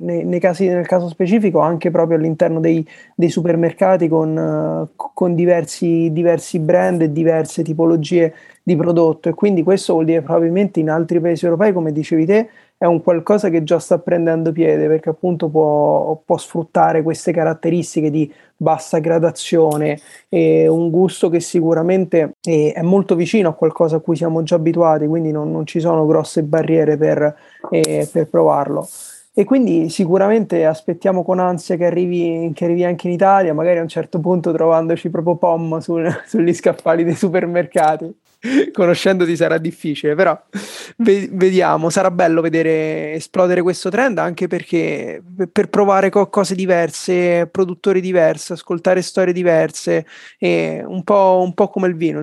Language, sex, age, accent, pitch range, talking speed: Italian, male, 30-49, native, 160-185 Hz, 150 wpm